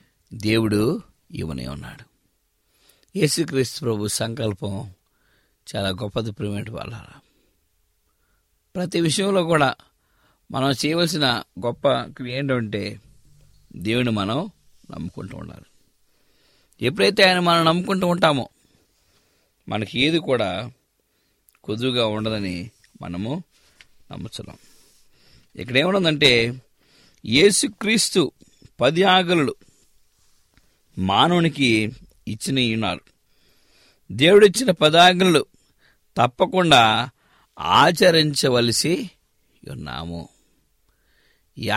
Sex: male